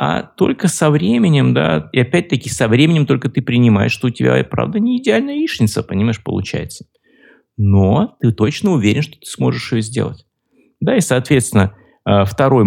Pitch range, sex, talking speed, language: 105-145 Hz, male, 160 wpm, Russian